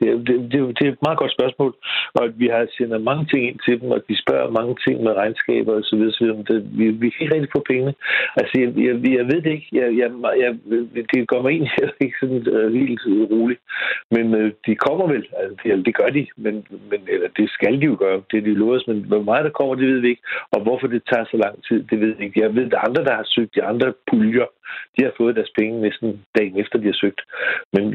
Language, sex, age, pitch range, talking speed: Danish, male, 60-79, 110-130 Hz, 260 wpm